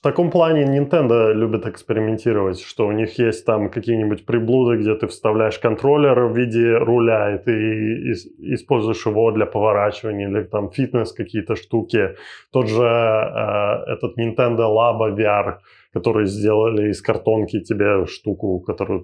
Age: 20-39